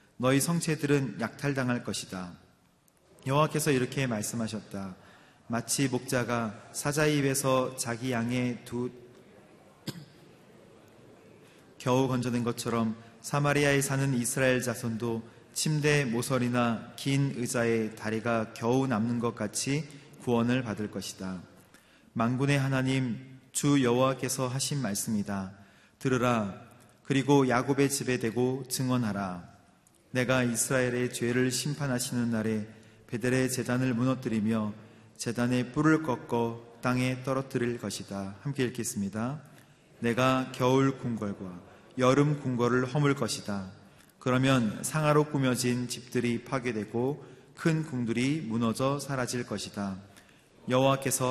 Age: 30-49